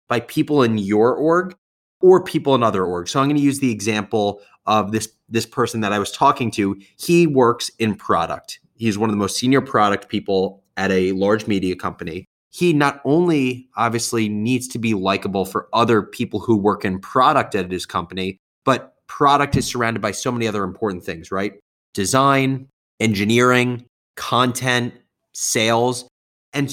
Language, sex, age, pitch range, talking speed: English, male, 20-39, 100-135 Hz, 175 wpm